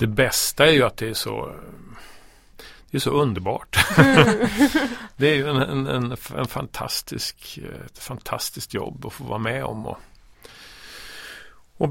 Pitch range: 115-140 Hz